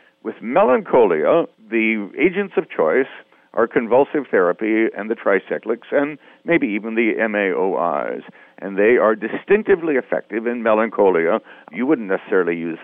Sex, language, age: male, English, 60-79